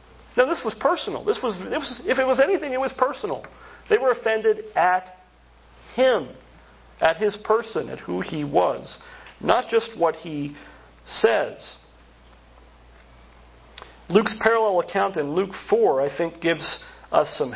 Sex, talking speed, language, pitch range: male, 145 wpm, English, 155-220 Hz